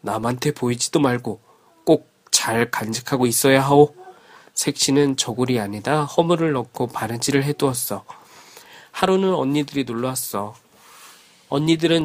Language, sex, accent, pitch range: Korean, male, native, 130-175 Hz